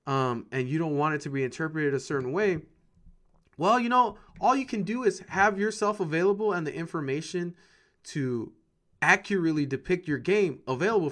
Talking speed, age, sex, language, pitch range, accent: 175 wpm, 30-49, male, English, 135-190 Hz, American